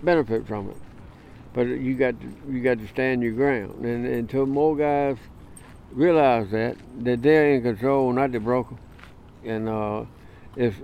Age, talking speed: 60-79, 165 wpm